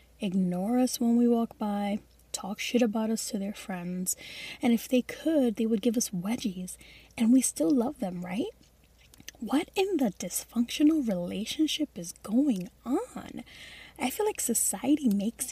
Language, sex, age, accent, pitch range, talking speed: English, female, 10-29, American, 195-260 Hz, 160 wpm